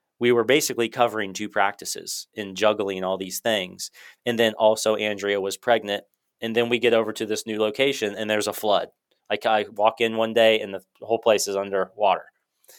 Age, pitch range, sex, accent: 30-49, 105-120 Hz, male, American